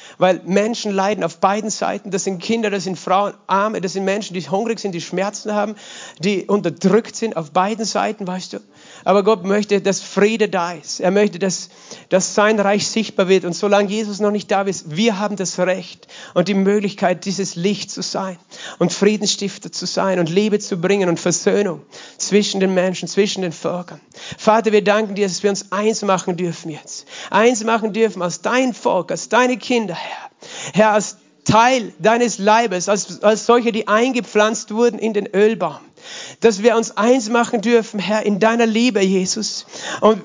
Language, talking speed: German, 185 wpm